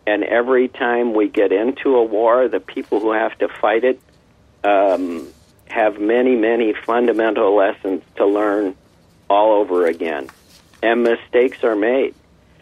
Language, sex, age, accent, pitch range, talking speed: English, male, 50-69, American, 100-125 Hz, 145 wpm